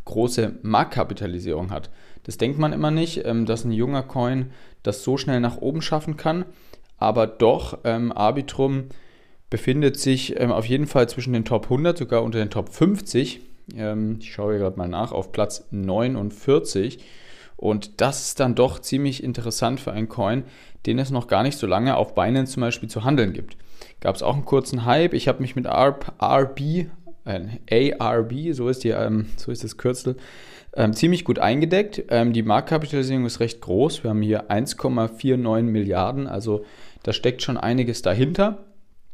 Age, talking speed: 30-49, 165 wpm